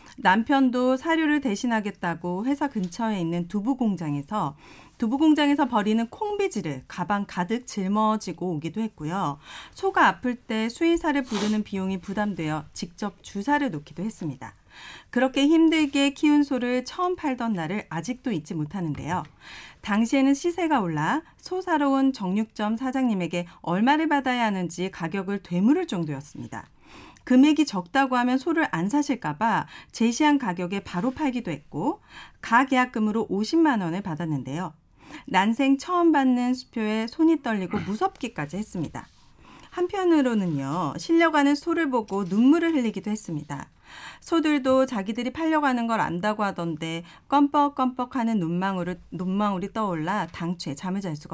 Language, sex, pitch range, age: Korean, female, 180-275 Hz, 40-59